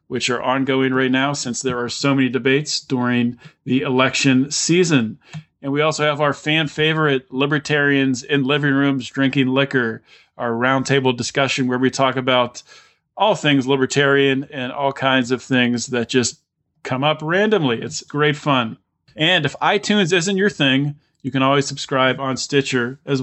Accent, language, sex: American, English, male